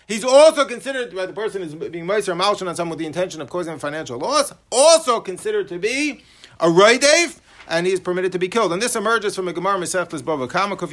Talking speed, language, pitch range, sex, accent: 230 wpm, English, 155-210 Hz, male, American